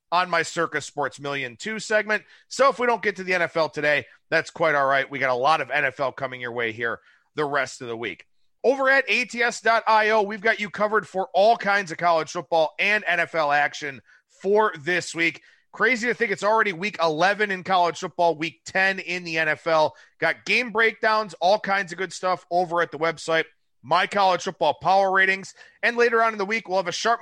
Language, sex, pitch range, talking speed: English, male, 165-215 Hz, 210 wpm